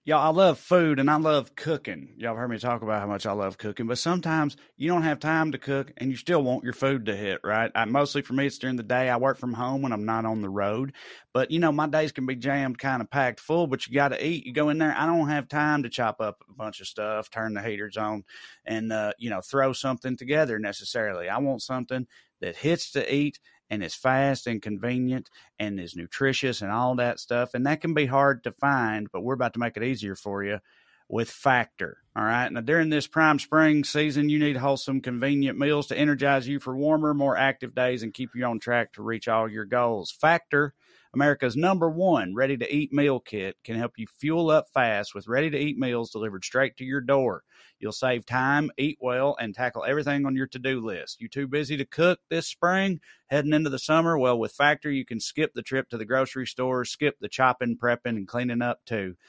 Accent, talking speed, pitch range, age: American, 230 wpm, 115-145 Hz, 30-49